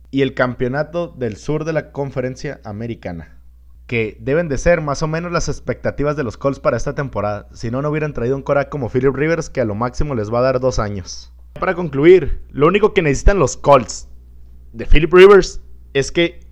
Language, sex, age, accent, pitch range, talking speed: Spanish, male, 30-49, Mexican, 120-165 Hz, 205 wpm